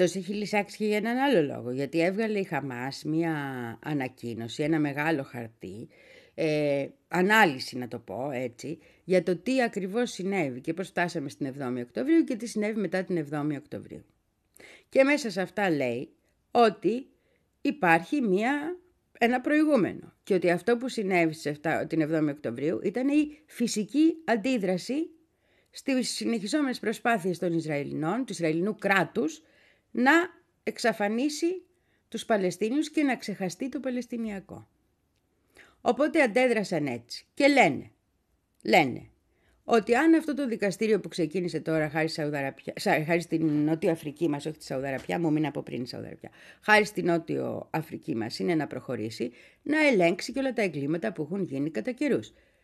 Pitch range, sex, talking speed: 155-250 Hz, female, 145 wpm